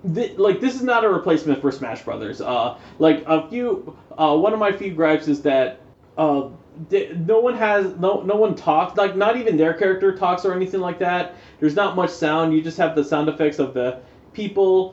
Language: English